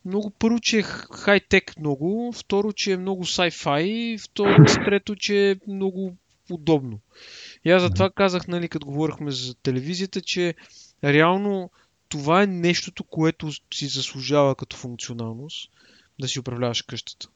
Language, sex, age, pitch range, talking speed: Bulgarian, male, 20-39, 125-180 Hz, 140 wpm